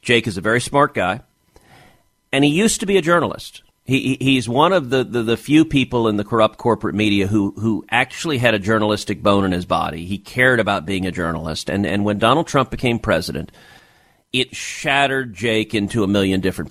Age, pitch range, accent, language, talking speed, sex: 40-59, 105-135 Hz, American, English, 205 wpm, male